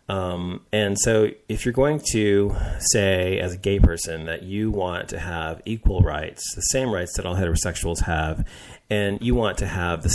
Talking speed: 190 wpm